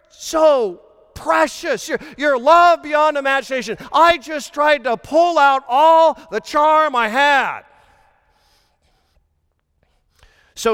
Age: 40-59